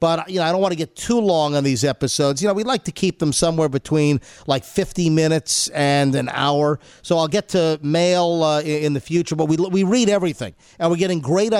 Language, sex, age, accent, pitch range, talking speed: English, male, 50-69, American, 155-205 Hz, 240 wpm